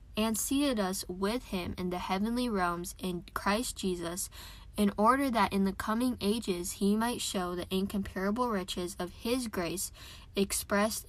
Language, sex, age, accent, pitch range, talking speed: English, female, 10-29, American, 180-220 Hz, 155 wpm